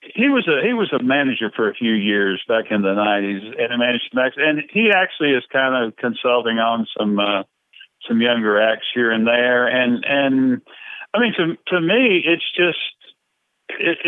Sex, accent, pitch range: male, American, 110-155 Hz